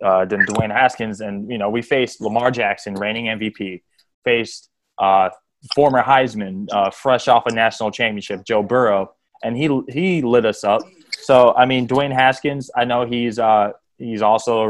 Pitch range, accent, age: 100-130 Hz, American, 20-39